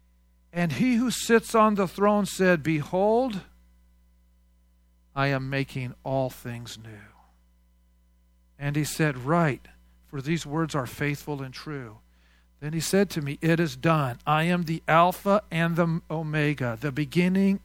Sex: male